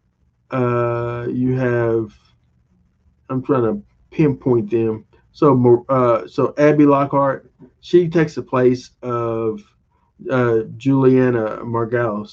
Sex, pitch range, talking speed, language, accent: male, 115-130 Hz, 100 wpm, English, American